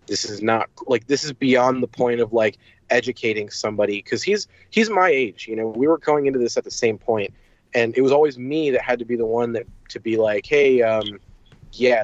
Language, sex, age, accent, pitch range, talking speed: English, male, 20-39, American, 115-165 Hz, 235 wpm